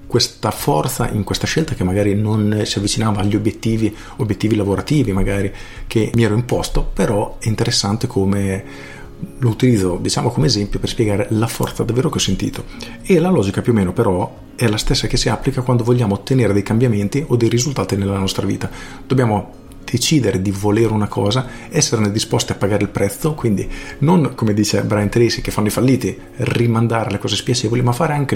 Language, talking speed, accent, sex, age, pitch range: Italian, 190 wpm, native, male, 40-59, 100-120 Hz